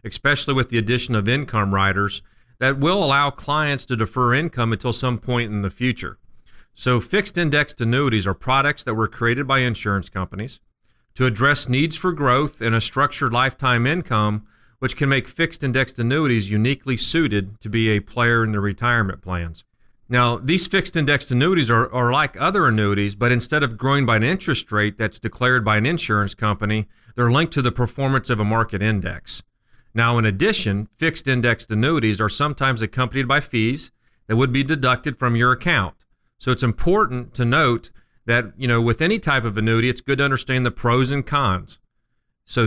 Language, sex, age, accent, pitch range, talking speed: English, male, 40-59, American, 110-140 Hz, 185 wpm